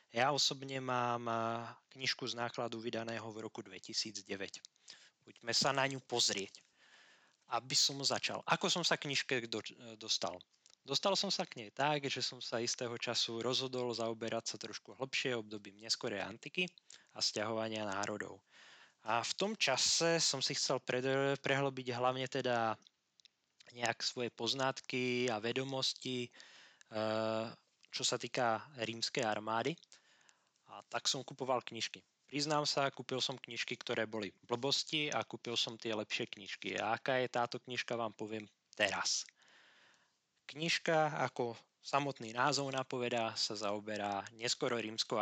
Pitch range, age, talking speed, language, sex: 110-135 Hz, 20-39, 135 wpm, Slovak, male